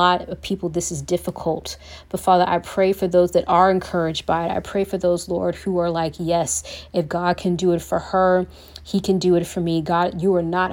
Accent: American